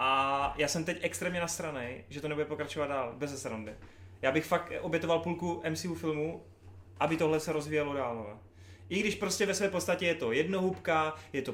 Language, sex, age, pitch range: Czech, male, 30-49, 120-155 Hz